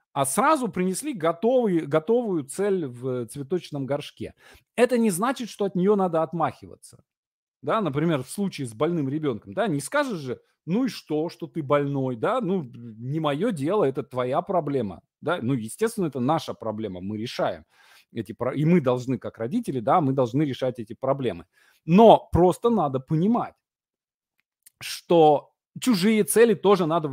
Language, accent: Russian, native